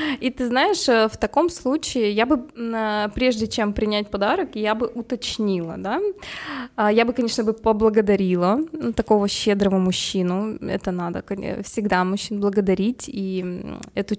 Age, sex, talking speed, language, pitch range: 20-39, female, 130 wpm, Russian, 200-250 Hz